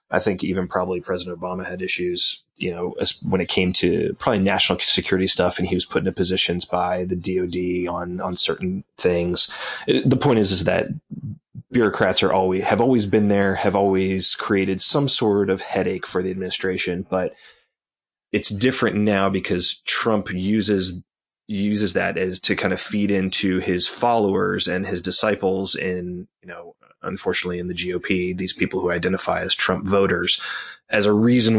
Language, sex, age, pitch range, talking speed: English, male, 30-49, 90-105 Hz, 175 wpm